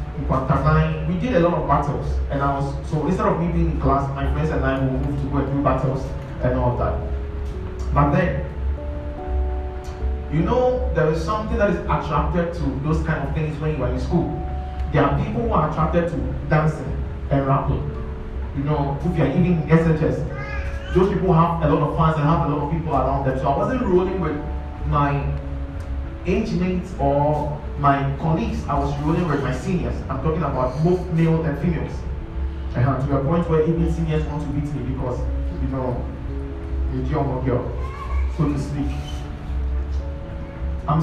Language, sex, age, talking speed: English, male, 20-39, 185 wpm